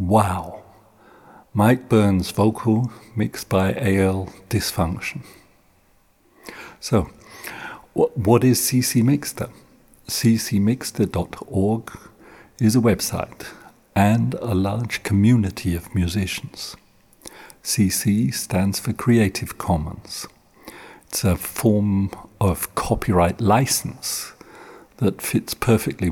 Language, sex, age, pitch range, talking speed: English, male, 50-69, 90-115 Hz, 85 wpm